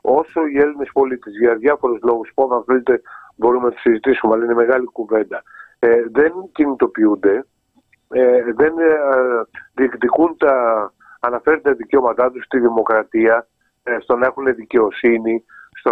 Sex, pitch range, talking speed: male, 120-165 Hz, 120 wpm